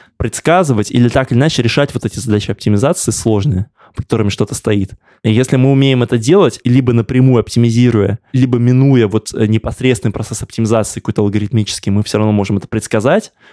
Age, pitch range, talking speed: 20-39, 110-130 Hz, 170 wpm